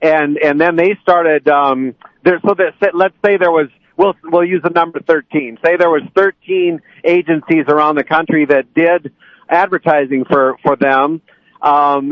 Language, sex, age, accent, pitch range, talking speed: English, male, 50-69, American, 145-170 Hz, 170 wpm